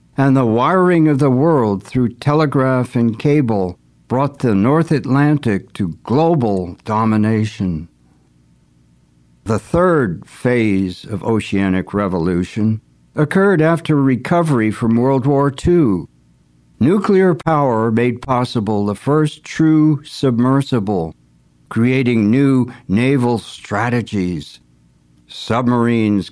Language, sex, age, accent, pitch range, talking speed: English, male, 60-79, American, 100-140 Hz, 100 wpm